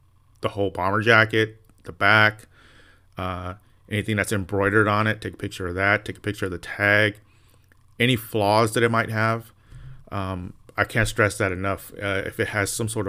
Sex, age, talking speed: male, 30-49, 190 wpm